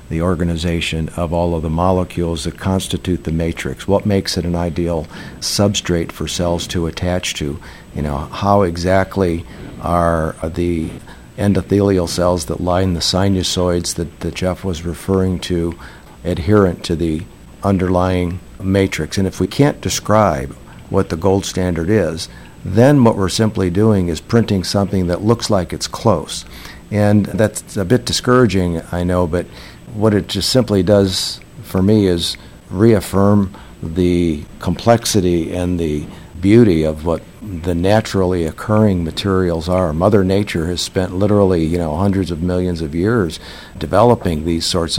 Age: 50-69